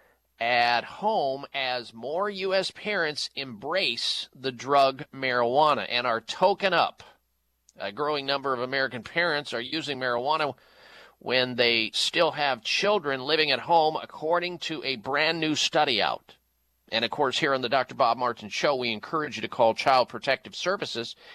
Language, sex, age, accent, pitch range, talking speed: English, male, 40-59, American, 130-170 Hz, 155 wpm